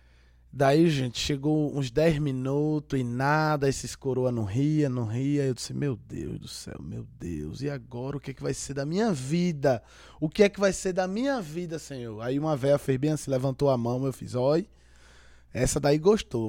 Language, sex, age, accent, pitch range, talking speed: Portuguese, male, 20-39, Brazilian, 115-155 Hz, 210 wpm